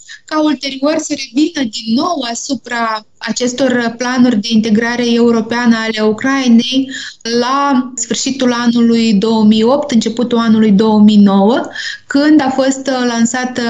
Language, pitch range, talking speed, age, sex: Romanian, 225-260 Hz, 110 wpm, 20-39, female